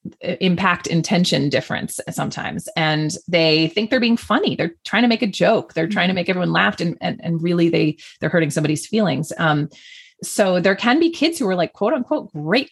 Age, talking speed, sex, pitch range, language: 30-49, 205 wpm, female, 160-220 Hz, English